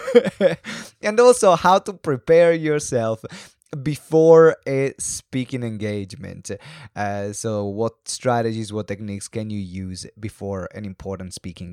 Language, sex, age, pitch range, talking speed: English, male, 20-39, 105-140 Hz, 120 wpm